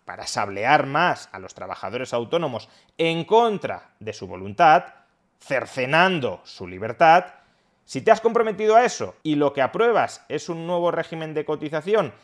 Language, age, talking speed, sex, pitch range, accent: Spanish, 30-49, 150 wpm, male, 135-190 Hz, Spanish